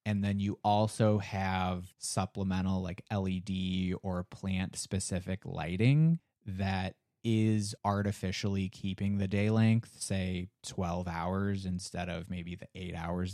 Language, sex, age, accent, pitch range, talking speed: English, male, 20-39, American, 90-110 Hz, 125 wpm